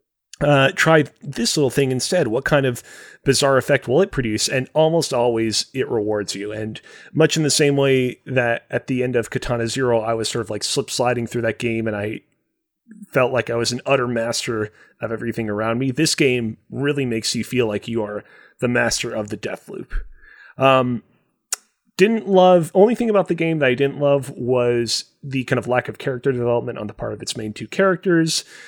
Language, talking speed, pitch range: English, 205 wpm, 115-150 Hz